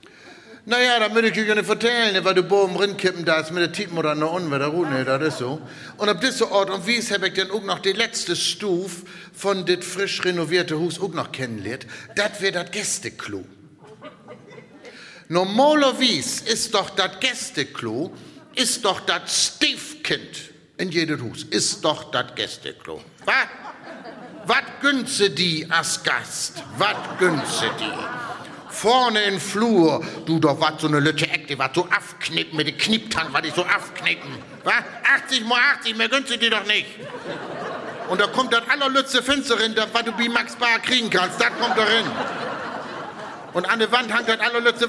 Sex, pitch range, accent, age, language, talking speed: male, 180-235 Hz, German, 60-79, German, 175 wpm